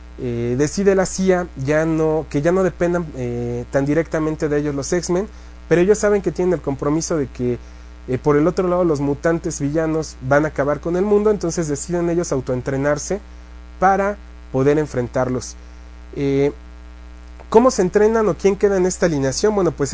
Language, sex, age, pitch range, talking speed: English, male, 30-49, 125-175 Hz, 170 wpm